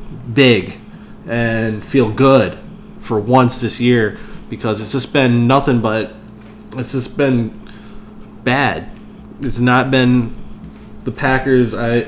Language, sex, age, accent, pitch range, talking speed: English, male, 20-39, American, 120-150 Hz, 120 wpm